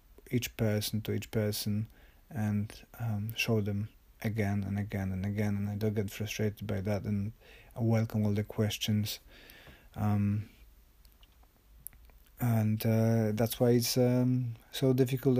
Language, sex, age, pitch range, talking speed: English, male, 30-49, 105-115 Hz, 140 wpm